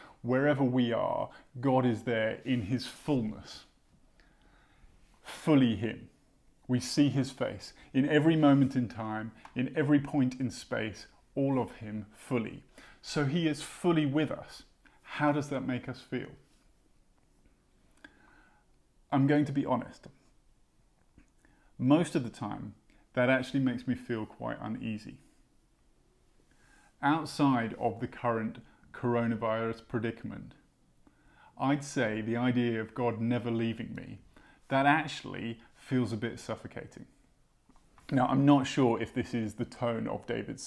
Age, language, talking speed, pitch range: 30-49, English, 130 wpm, 115-140 Hz